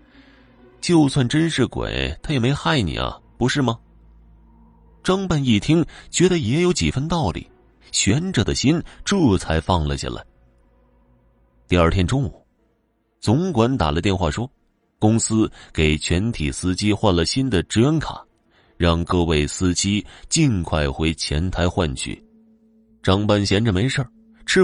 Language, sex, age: Chinese, male, 30-49